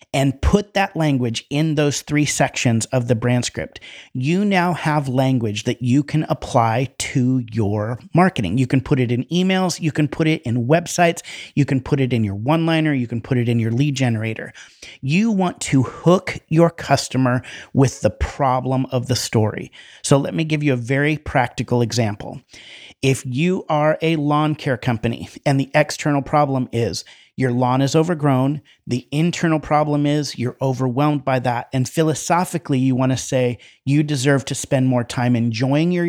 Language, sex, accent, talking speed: English, male, American, 180 wpm